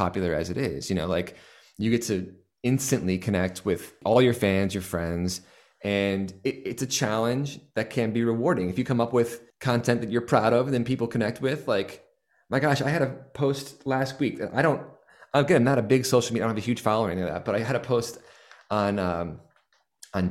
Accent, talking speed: American, 220 wpm